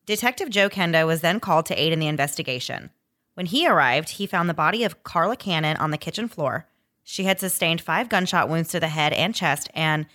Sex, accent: female, American